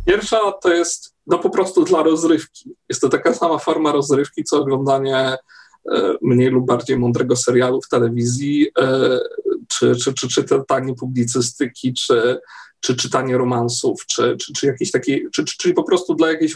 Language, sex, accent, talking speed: Polish, male, native, 170 wpm